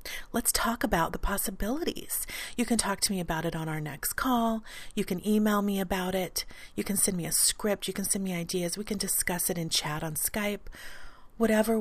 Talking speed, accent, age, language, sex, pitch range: 215 wpm, American, 40-59, English, female, 175-225 Hz